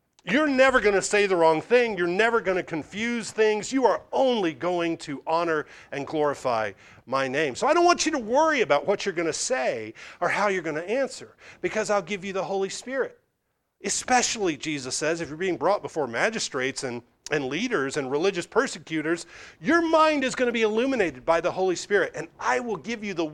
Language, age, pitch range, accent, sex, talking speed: English, 40-59, 150-215 Hz, American, male, 210 wpm